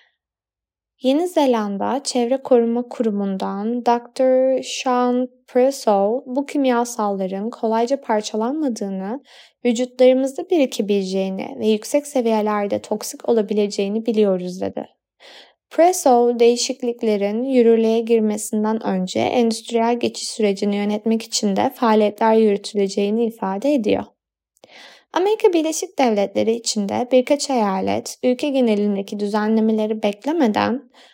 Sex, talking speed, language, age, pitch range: female, 90 wpm, Turkish, 20-39, 215-260 Hz